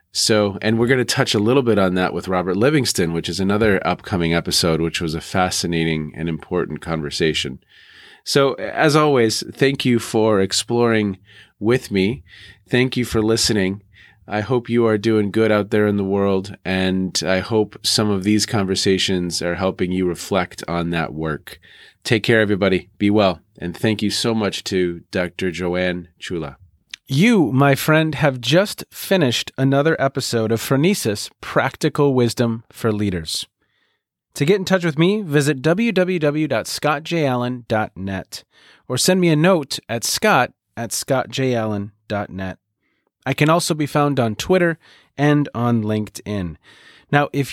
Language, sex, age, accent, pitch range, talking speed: English, male, 30-49, American, 95-140 Hz, 155 wpm